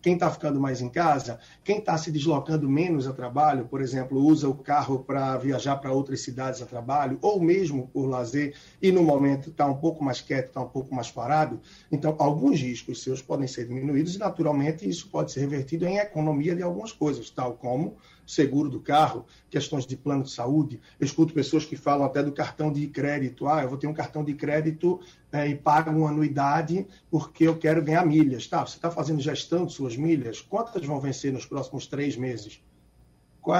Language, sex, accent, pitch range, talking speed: Portuguese, male, Brazilian, 130-155 Hz, 205 wpm